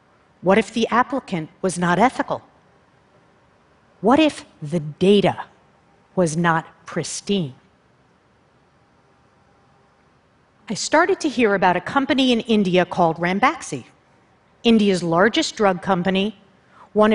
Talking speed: 105 wpm